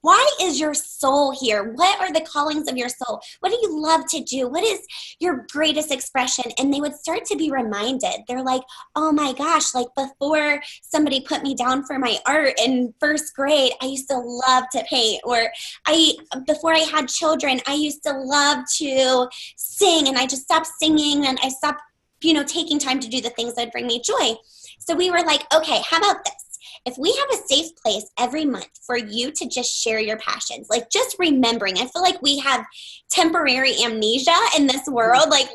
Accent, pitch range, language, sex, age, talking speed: American, 245-325 Hz, English, female, 20-39, 205 wpm